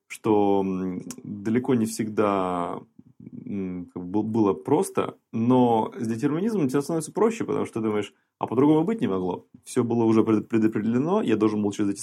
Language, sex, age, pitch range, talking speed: Russian, male, 20-39, 95-125 Hz, 150 wpm